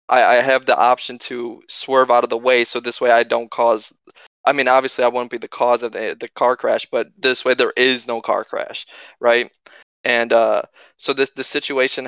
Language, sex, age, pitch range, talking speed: English, male, 20-39, 120-125 Hz, 215 wpm